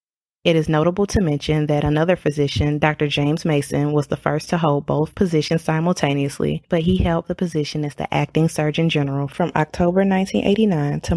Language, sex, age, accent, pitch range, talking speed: English, female, 20-39, American, 145-170 Hz, 170 wpm